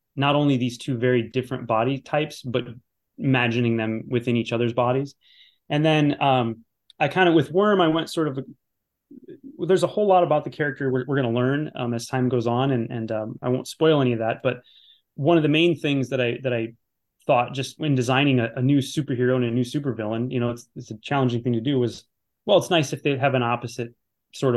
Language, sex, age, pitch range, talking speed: English, male, 20-39, 115-135 Hz, 230 wpm